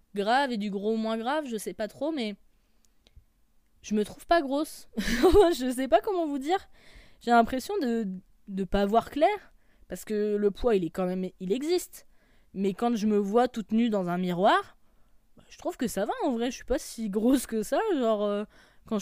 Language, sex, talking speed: French, female, 210 wpm